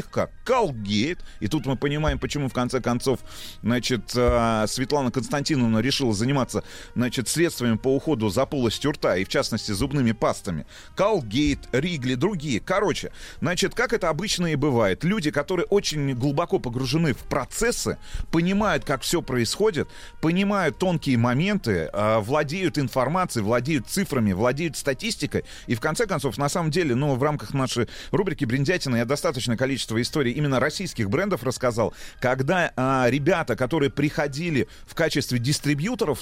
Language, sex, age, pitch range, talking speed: Russian, male, 30-49, 125-165 Hz, 145 wpm